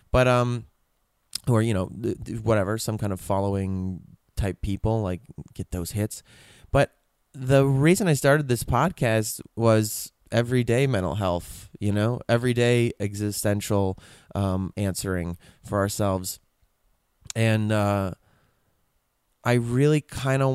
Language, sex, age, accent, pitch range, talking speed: English, male, 20-39, American, 95-120 Hz, 120 wpm